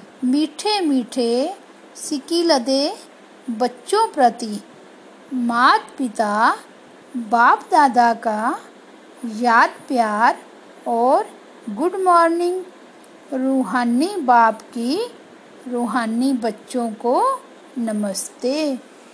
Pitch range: 235-295 Hz